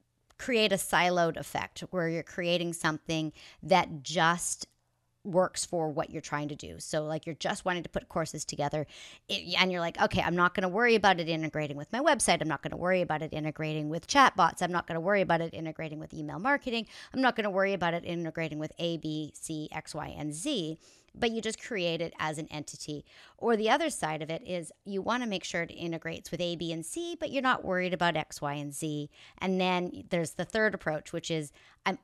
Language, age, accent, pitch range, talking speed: English, 40-59, American, 155-190 Hz, 230 wpm